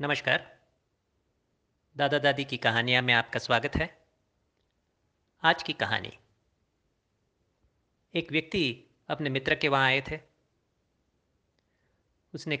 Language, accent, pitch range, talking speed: Hindi, native, 105-160 Hz, 100 wpm